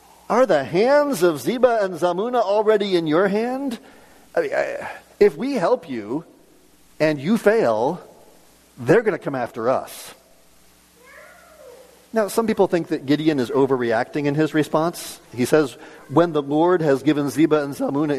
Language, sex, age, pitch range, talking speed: English, male, 50-69, 120-180 Hz, 150 wpm